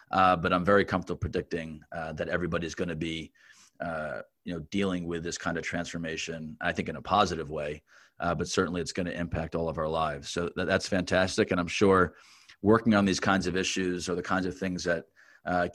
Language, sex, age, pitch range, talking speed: English, male, 30-49, 85-100 Hz, 220 wpm